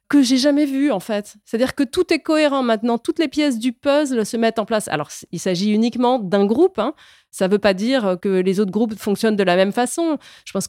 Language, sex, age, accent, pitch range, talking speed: French, female, 30-49, French, 195-260 Hz, 245 wpm